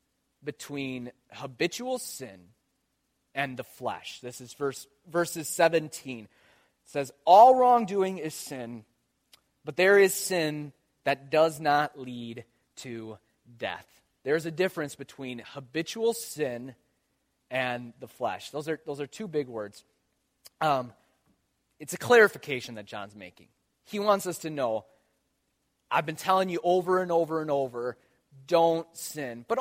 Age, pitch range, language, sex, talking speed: 30-49, 140-230 Hz, English, male, 135 wpm